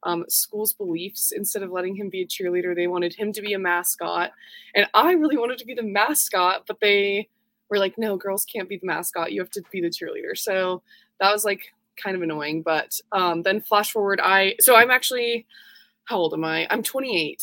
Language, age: English, 20-39